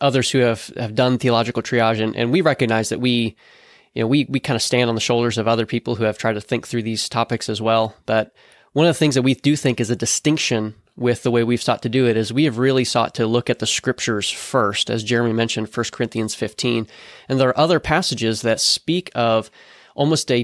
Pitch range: 115-140 Hz